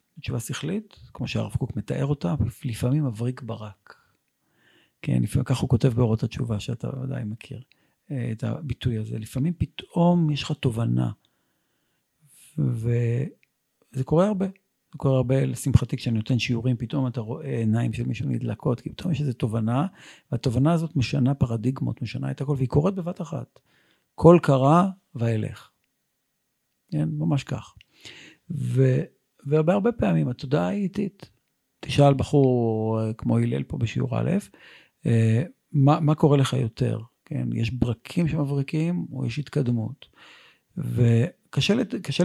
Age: 50-69